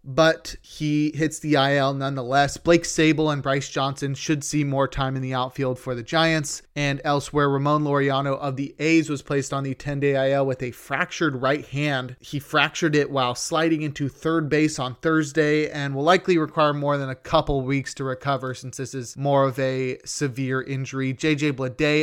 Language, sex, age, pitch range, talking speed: English, male, 30-49, 135-160 Hz, 190 wpm